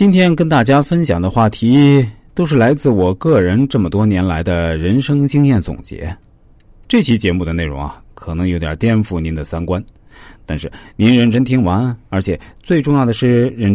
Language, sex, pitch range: Chinese, male, 90-130 Hz